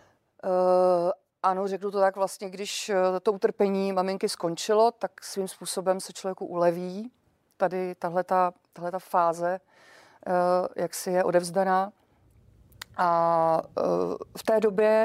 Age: 40-59